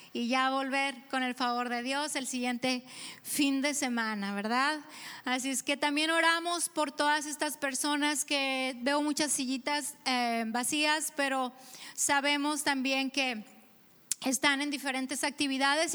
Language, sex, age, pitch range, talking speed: Spanish, female, 30-49, 260-295 Hz, 140 wpm